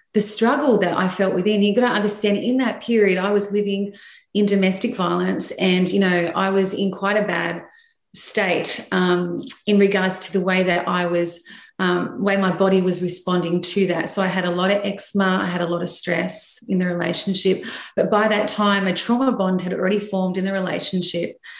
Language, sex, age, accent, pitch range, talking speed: English, female, 30-49, Australian, 180-205 Hz, 210 wpm